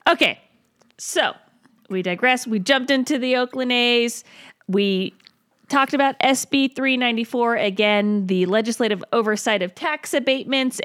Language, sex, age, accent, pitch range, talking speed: English, female, 40-59, American, 195-265 Hz, 120 wpm